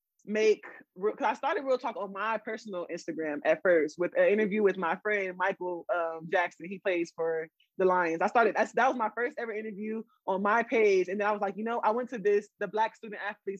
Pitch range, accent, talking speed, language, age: 195-235 Hz, American, 230 wpm, English, 20-39